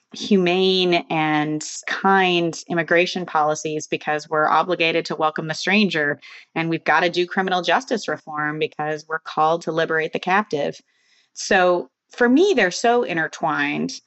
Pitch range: 155-185 Hz